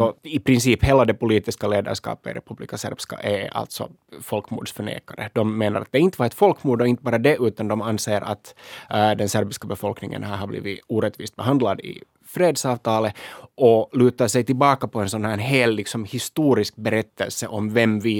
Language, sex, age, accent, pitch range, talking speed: Swedish, male, 20-39, Finnish, 100-120 Hz, 185 wpm